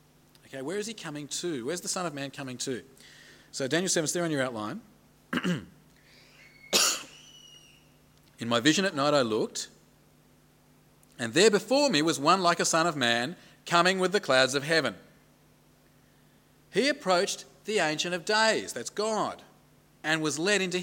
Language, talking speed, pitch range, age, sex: English, 165 wpm, 135-180 Hz, 40-59, male